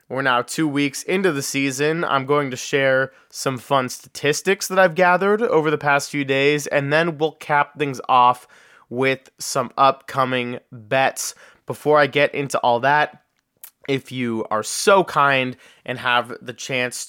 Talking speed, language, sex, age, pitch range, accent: 165 wpm, English, male, 20-39, 125-145 Hz, American